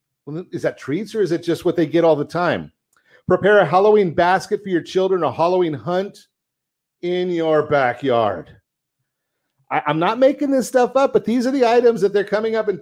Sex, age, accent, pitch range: male, 40-59, American, 140-195 Hz